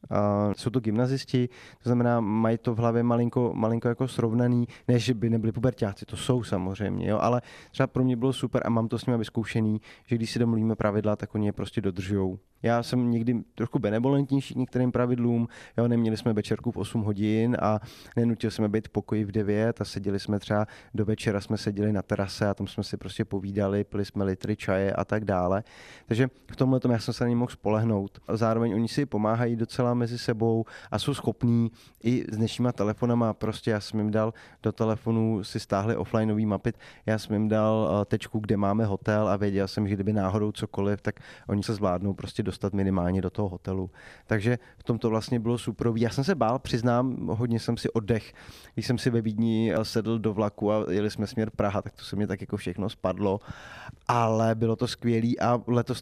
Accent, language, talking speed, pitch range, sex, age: native, Czech, 205 wpm, 105-120 Hz, male, 20-39